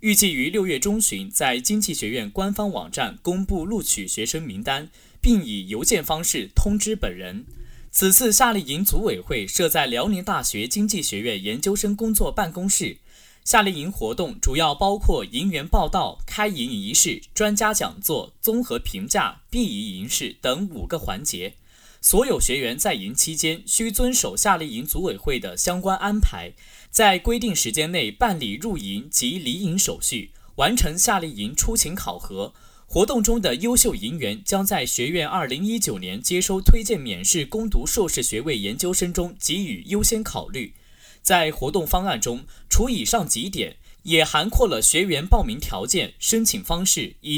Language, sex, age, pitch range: Chinese, male, 20-39, 175-220 Hz